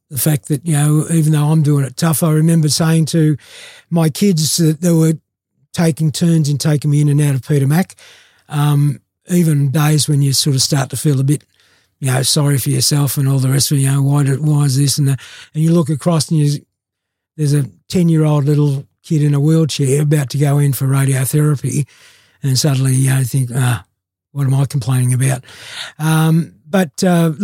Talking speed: 215 wpm